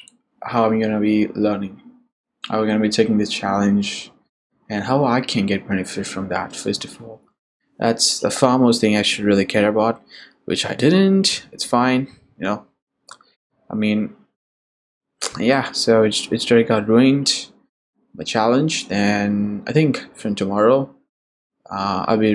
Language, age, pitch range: English, 20-39, 105-120 Hz